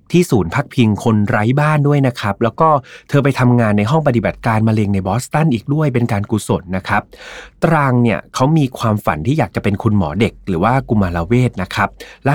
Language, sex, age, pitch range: Thai, male, 30-49, 100-135 Hz